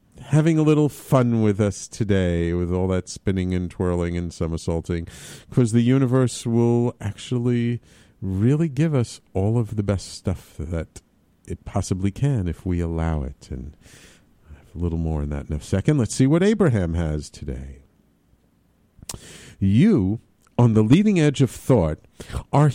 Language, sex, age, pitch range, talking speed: English, male, 50-69, 90-140 Hz, 160 wpm